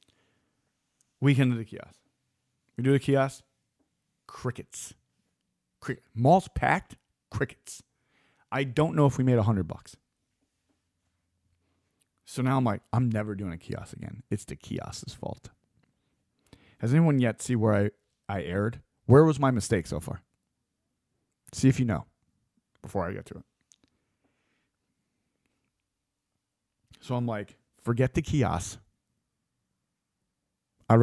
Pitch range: 100-130 Hz